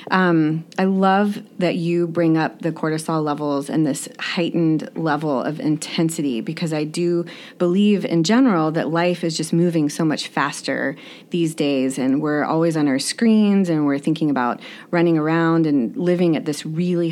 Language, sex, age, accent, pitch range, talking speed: English, female, 30-49, American, 155-185 Hz, 170 wpm